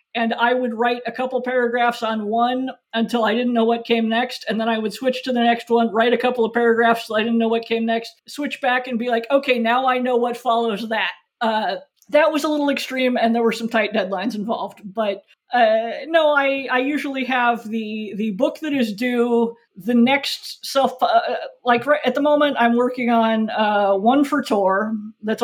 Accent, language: American, English